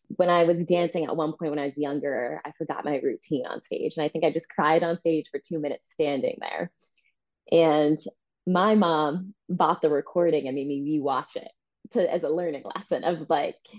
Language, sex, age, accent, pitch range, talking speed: English, female, 20-39, American, 140-175 Hz, 210 wpm